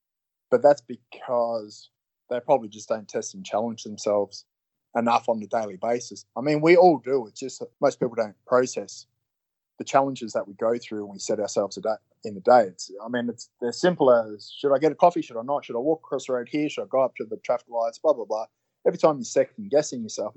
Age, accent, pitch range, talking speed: 20-39, Australian, 105-125 Hz, 240 wpm